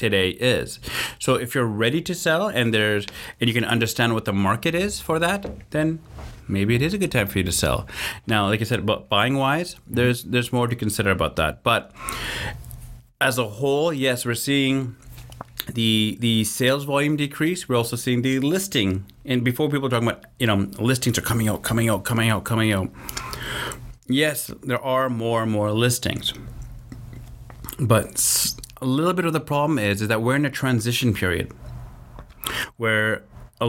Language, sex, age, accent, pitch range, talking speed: English, male, 30-49, American, 110-130 Hz, 185 wpm